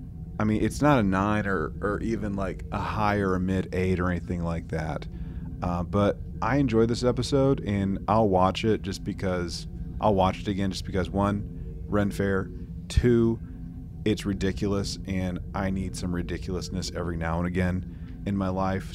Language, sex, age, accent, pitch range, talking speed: English, male, 30-49, American, 85-105 Hz, 175 wpm